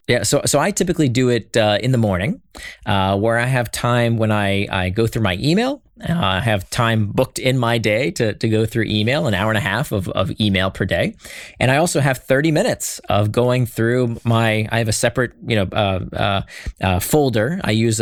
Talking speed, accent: 225 wpm, American